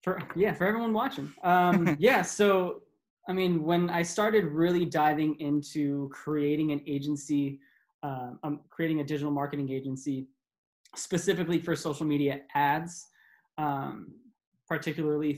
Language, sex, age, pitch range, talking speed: English, male, 20-39, 145-170 Hz, 130 wpm